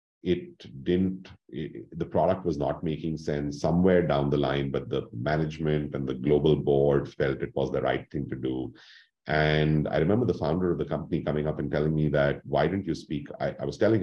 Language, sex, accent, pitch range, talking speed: English, male, Indian, 65-75 Hz, 215 wpm